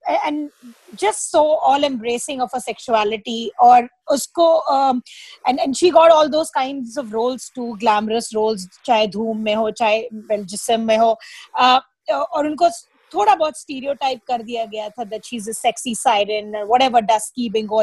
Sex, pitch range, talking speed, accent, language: female, 230-300 Hz, 80 wpm, native, Hindi